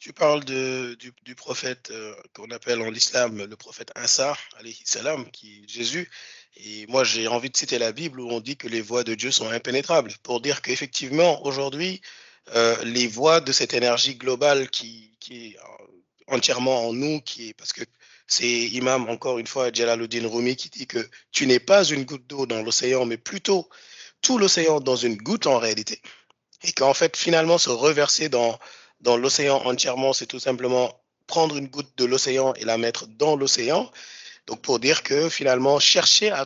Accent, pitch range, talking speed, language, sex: French, 115-140 Hz, 185 wpm, French, male